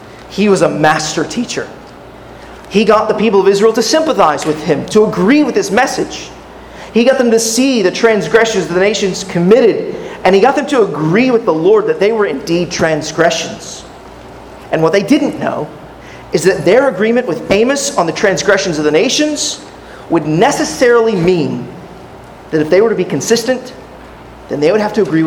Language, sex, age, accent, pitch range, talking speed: English, male, 30-49, American, 170-220 Hz, 185 wpm